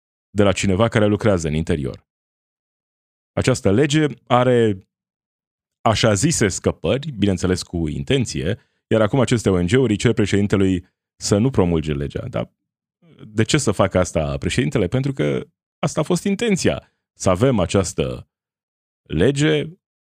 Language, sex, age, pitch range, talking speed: Romanian, male, 20-39, 85-115 Hz, 125 wpm